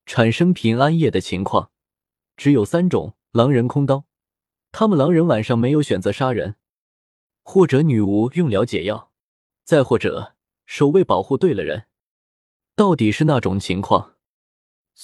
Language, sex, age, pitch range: Chinese, male, 20-39, 105-160 Hz